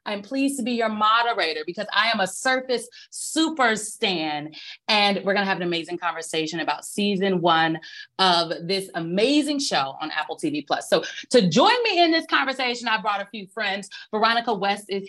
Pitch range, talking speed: 190-280 Hz, 185 wpm